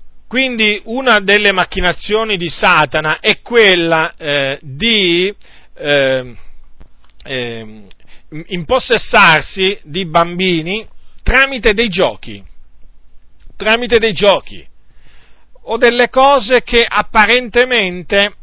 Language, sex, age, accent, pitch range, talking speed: Italian, male, 40-59, native, 135-205 Hz, 85 wpm